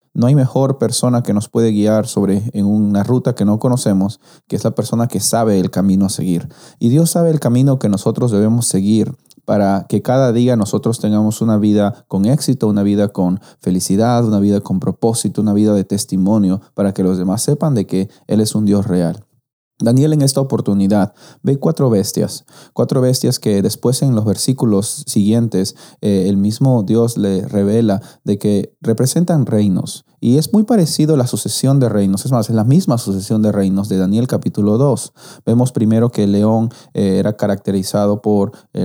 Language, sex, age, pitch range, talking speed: Spanish, male, 30-49, 100-125 Hz, 190 wpm